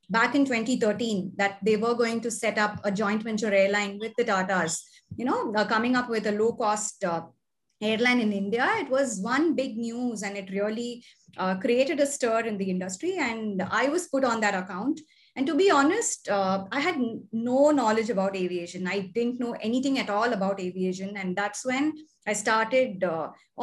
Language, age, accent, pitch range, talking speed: English, 20-39, Indian, 210-270 Hz, 195 wpm